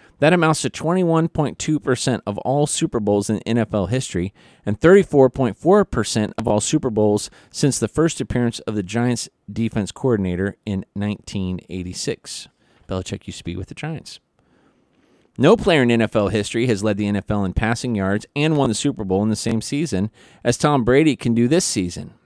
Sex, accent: male, American